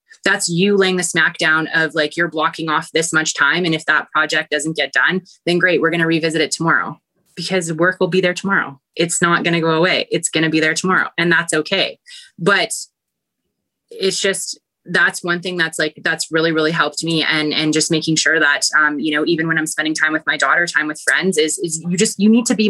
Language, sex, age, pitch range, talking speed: English, female, 20-39, 155-175 Hz, 240 wpm